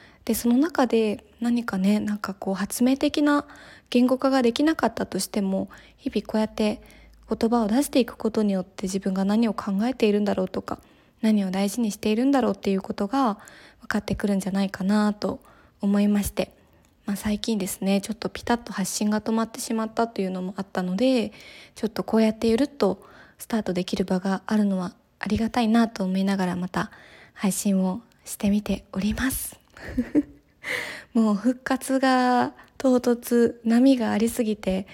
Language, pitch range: Japanese, 195-235 Hz